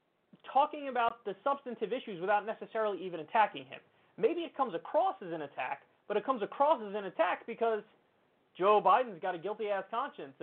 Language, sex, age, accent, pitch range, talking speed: English, male, 30-49, American, 190-255 Hz, 180 wpm